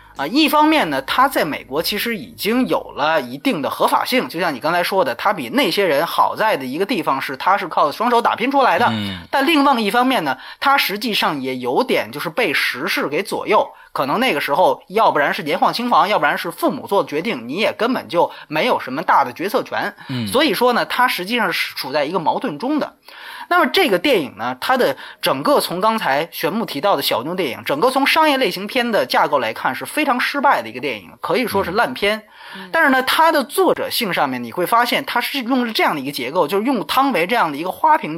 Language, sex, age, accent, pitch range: Chinese, male, 20-39, native, 205-290 Hz